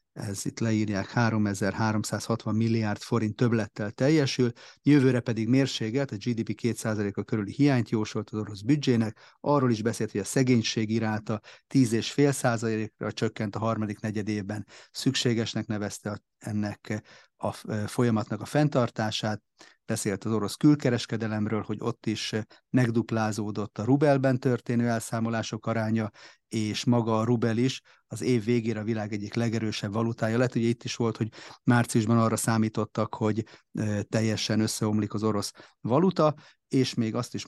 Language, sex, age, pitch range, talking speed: Hungarian, male, 30-49, 110-125 Hz, 135 wpm